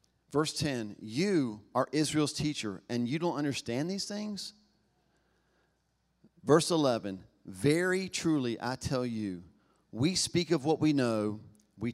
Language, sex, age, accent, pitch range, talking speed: English, male, 40-59, American, 115-160 Hz, 130 wpm